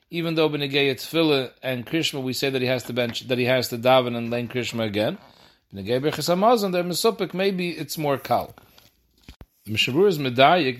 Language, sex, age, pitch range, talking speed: English, male, 40-59, 120-165 Hz, 195 wpm